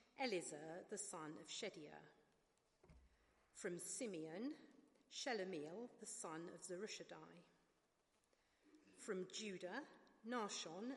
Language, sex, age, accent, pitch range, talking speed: English, female, 40-59, British, 180-235 Hz, 80 wpm